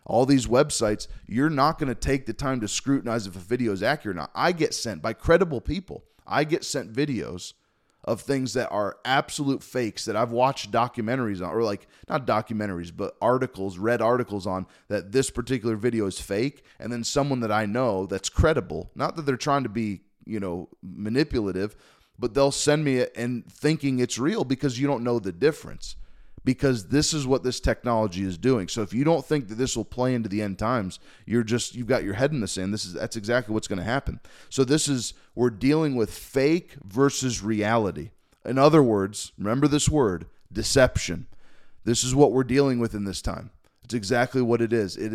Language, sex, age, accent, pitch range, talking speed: English, male, 30-49, American, 105-135 Hz, 205 wpm